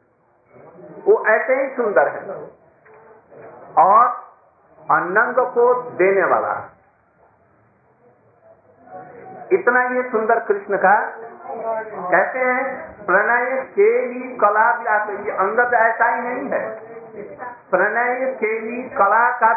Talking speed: 90 wpm